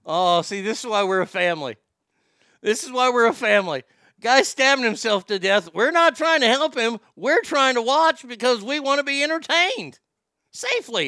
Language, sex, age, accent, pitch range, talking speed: English, male, 50-69, American, 155-220 Hz, 195 wpm